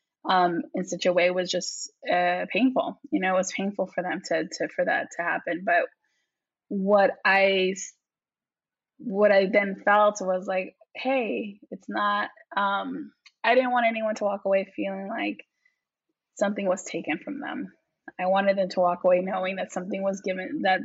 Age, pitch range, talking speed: 20-39, 185-225 Hz, 175 wpm